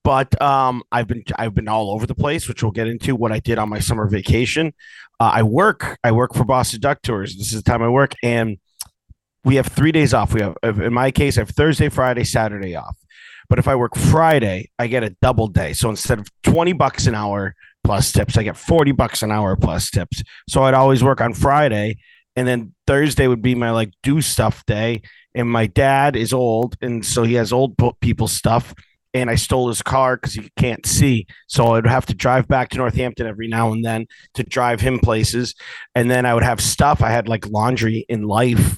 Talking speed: 225 wpm